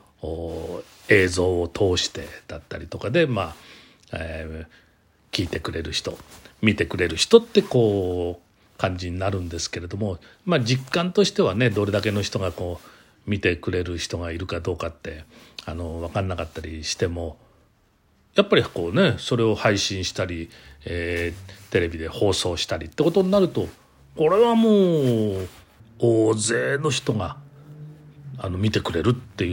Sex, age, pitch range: male, 40-59, 90-115 Hz